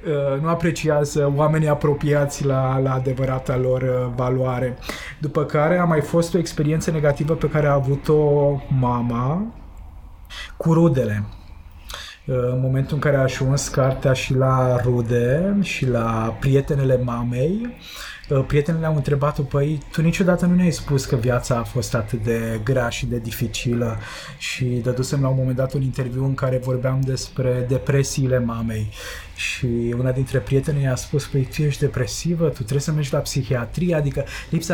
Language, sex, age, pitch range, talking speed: Romanian, male, 20-39, 125-145 Hz, 155 wpm